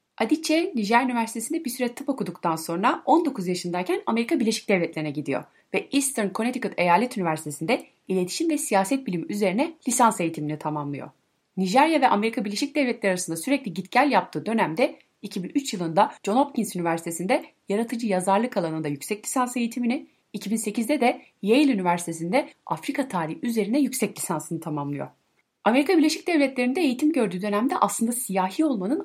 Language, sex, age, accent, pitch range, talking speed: Turkish, female, 30-49, native, 180-265 Hz, 140 wpm